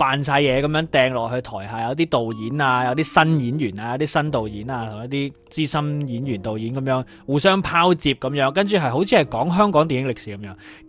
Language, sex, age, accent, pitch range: Chinese, male, 20-39, native, 115-165 Hz